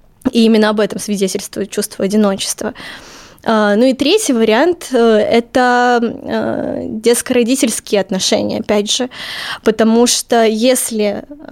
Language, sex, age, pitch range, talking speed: Russian, female, 20-39, 210-245 Hz, 100 wpm